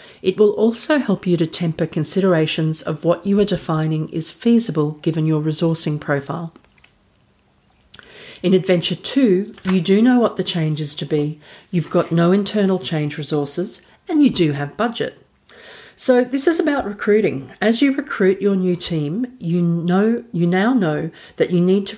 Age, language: 40-59, English